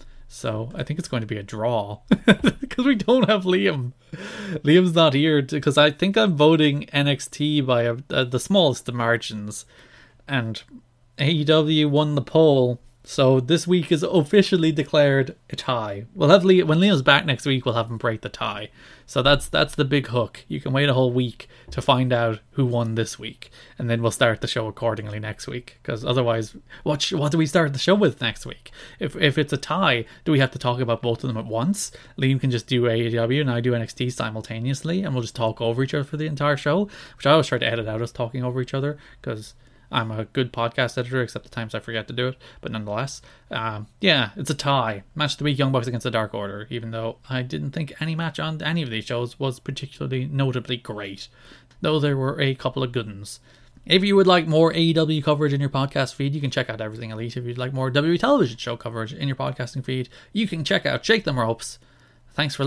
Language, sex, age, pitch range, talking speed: English, male, 20-39, 120-150 Hz, 230 wpm